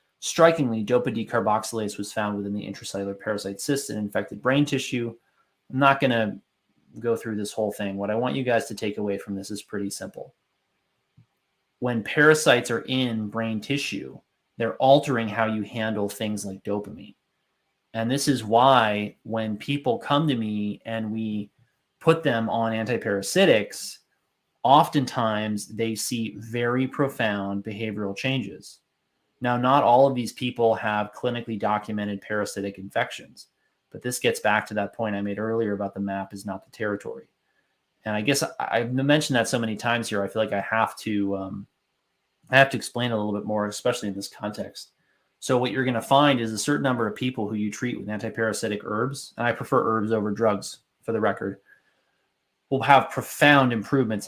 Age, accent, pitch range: 30-49, American, 105-125 Hz